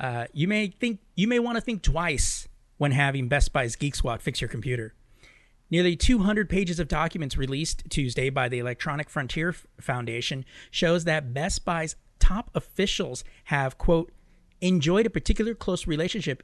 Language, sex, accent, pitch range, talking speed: English, male, American, 130-170 Hz, 160 wpm